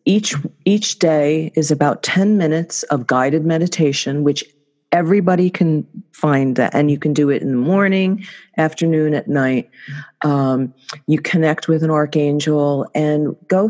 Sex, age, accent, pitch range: female, 40-59, American, 135-165 Hz